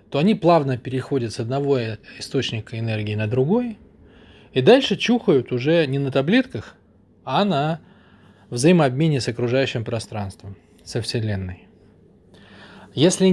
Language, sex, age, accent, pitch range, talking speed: Russian, male, 20-39, native, 110-145 Hz, 115 wpm